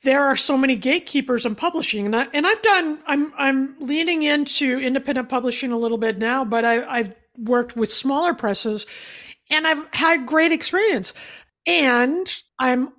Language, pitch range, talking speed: English, 225-285 Hz, 165 wpm